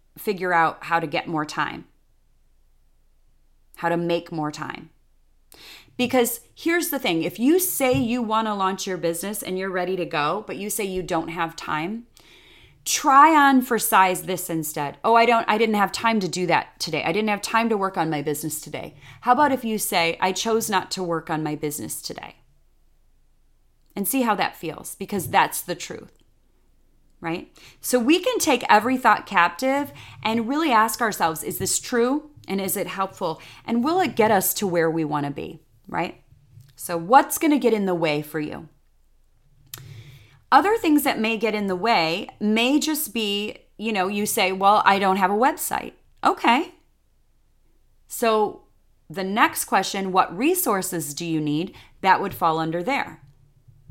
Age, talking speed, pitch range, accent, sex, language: 30-49, 185 wpm, 155-230 Hz, American, female, English